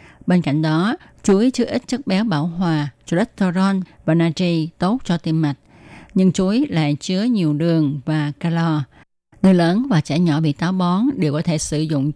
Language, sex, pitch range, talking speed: Vietnamese, female, 155-200 Hz, 190 wpm